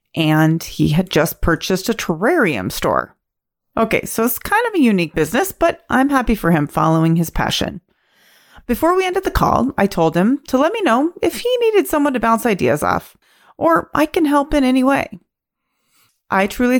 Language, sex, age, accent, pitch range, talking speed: English, female, 30-49, American, 165-255 Hz, 190 wpm